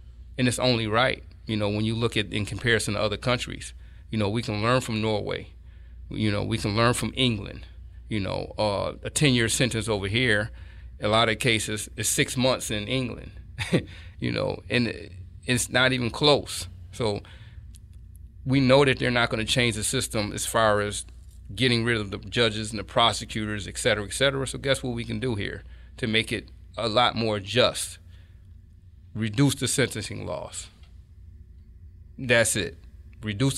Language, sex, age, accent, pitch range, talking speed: English, male, 30-49, American, 95-125 Hz, 180 wpm